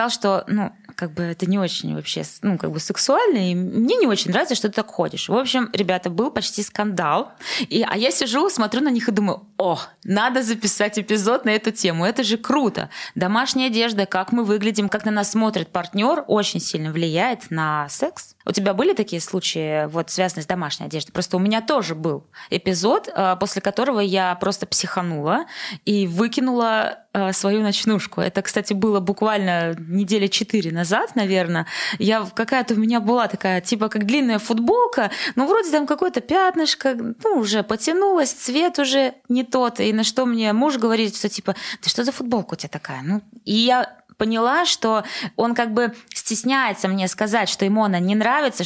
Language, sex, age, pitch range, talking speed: Russian, female, 20-39, 185-235 Hz, 180 wpm